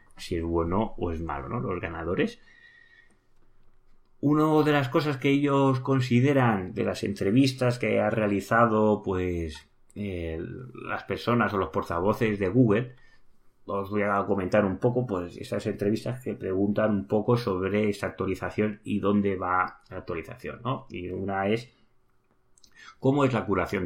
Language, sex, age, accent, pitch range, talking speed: Spanish, male, 30-49, Spanish, 90-125 Hz, 150 wpm